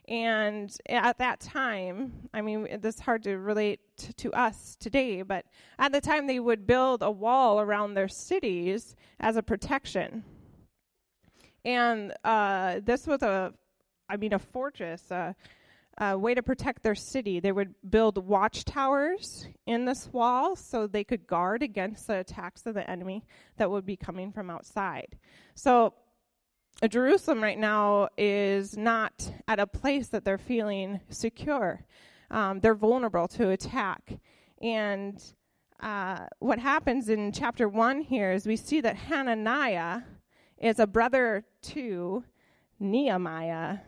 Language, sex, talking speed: English, female, 140 wpm